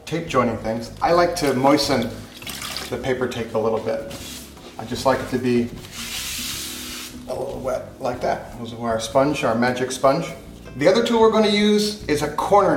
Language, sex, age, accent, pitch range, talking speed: English, male, 30-49, American, 120-170 Hz, 190 wpm